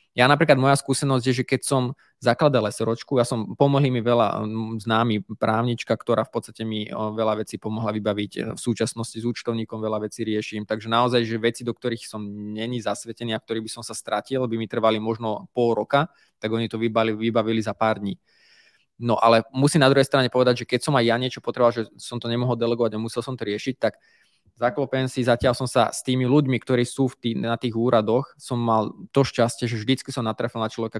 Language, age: Slovak, 20-39